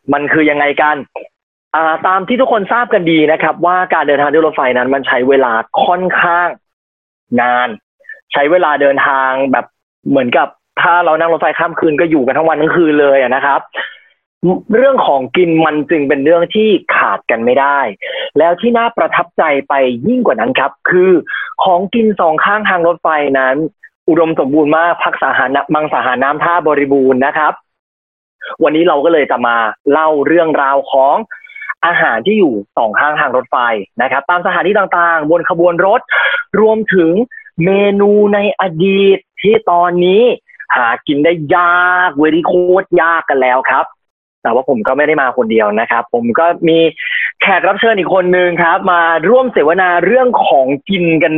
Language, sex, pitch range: English, male, 150-195 Hz